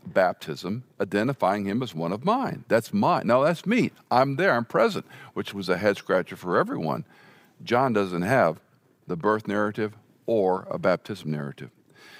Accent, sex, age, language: American, male, 50-69, English